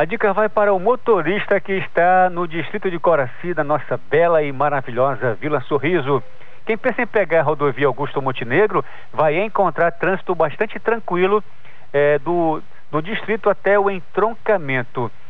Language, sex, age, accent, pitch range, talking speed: Portuguese, male, 50-69, Brazilian, 145-190 Hz, 155 wpm